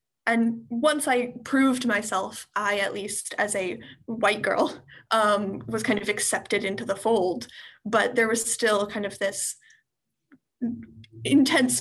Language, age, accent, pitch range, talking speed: English, 10-29, American, 210-250 Hz, 140 wpm